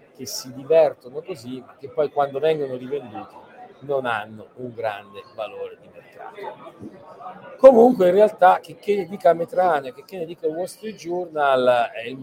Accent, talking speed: native, 155 wpm